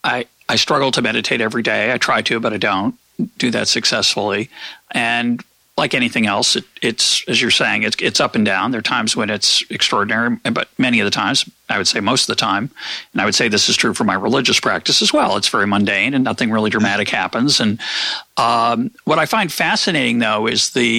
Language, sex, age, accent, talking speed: English, male, 40-59, American, 220 wpm